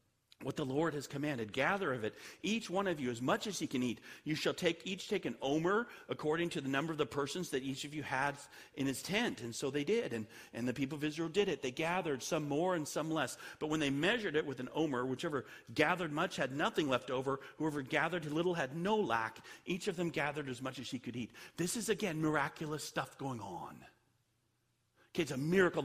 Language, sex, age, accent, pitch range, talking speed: English, male, 40-59, American, 125-175 Hz, 235 wpm